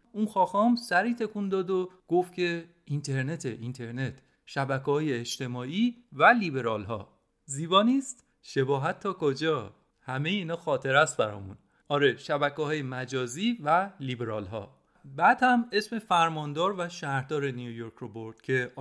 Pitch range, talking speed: 135-200 Hz, 135 wpm